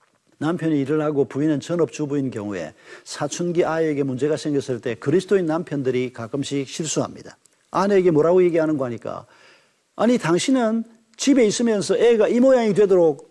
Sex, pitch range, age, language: male, 140-195 Hz, 50-69, Korean